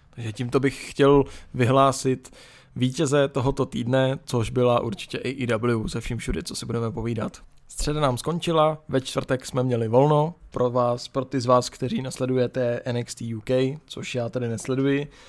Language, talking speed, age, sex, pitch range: Czech, 165 wpm, 20-39, male, 120-140 Hz